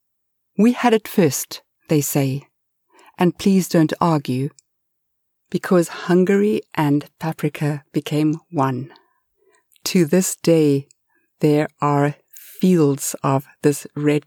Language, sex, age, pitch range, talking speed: English, female, 60-79, 145-195 Hz, 105 wpm